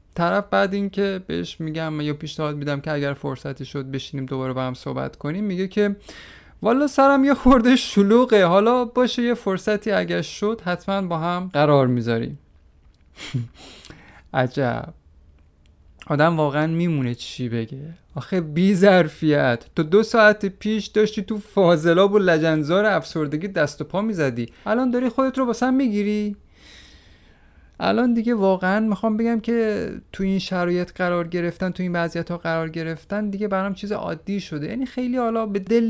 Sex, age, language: male, 30-49, Persian